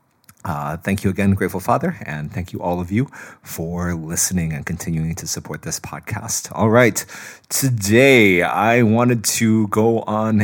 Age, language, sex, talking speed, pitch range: 30-49, English, male, 160 wpm, 85-110 Hz